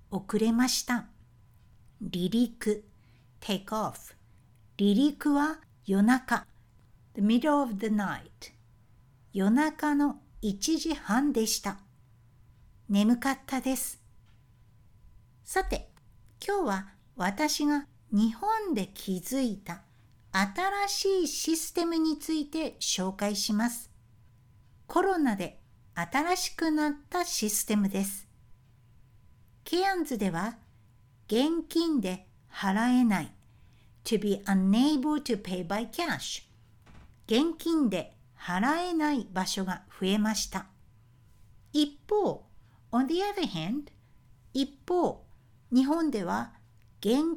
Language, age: Japanese, 60-79